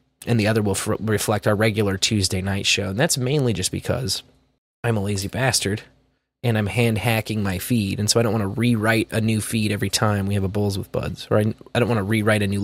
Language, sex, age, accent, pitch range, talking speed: English, male, 20-39, American, 100-125 Hz, 240 wpm